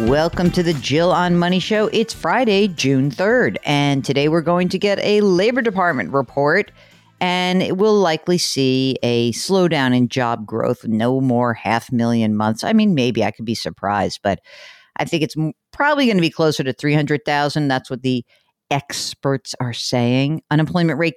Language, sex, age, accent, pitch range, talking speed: English, female, 50-69, American, 125-180 Hz, 175 wpm